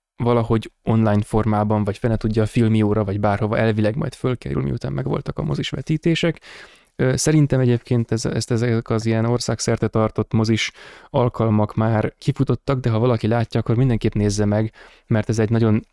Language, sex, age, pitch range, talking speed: Hungarian, male, 20-39, 105-120 Hz, 160 wpm